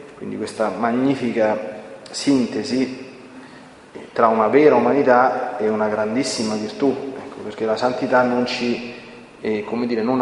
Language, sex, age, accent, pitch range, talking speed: Italian, male, 30-49, native, 115-130 Hz, 130 wpm